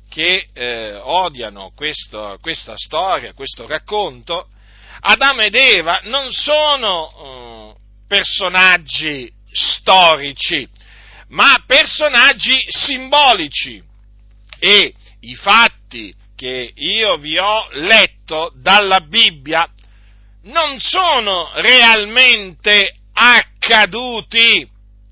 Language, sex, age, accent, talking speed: Italian, male, 50-69, native, 80 wpm